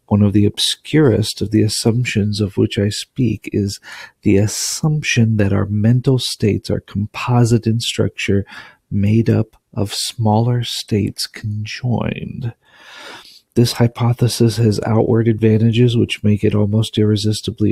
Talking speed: 130 wpm